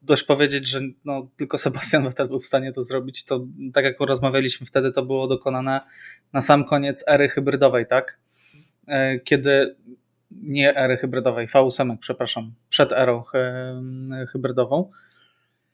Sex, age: male, 20-39